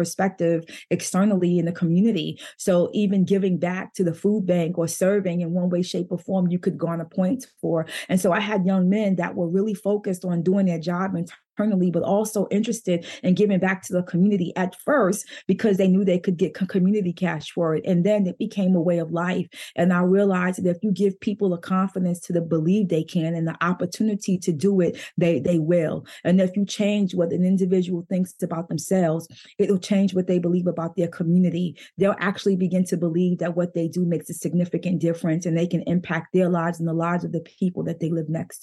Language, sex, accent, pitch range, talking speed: English, female, American, 170-195 Hz, 225 wpm